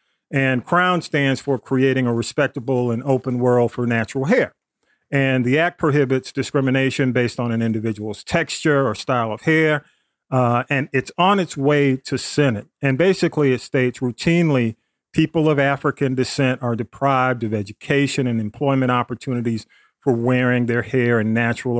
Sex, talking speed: male, 155 wpm